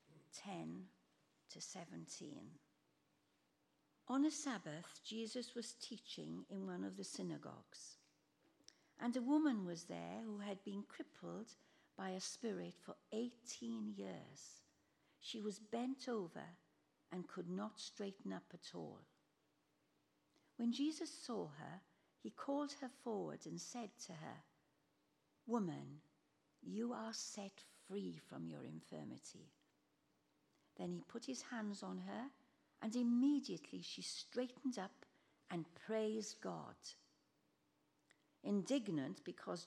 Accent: British